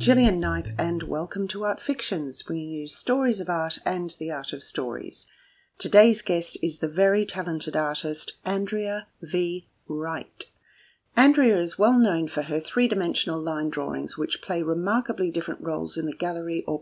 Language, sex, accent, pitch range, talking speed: English, female, Australian, 155-205 Hz, 165 wpm